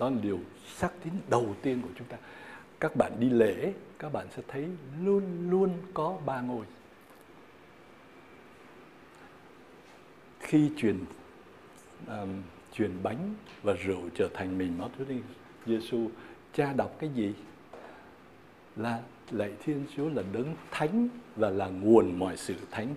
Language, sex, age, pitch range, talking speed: Vietnamese, male, 60-79, 115-175 Hz, 140 wpm